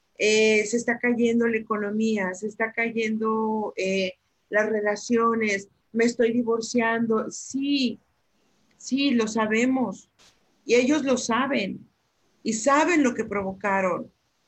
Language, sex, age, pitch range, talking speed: Spanish, female, 50-69, 210-245 Hz, 115 wpm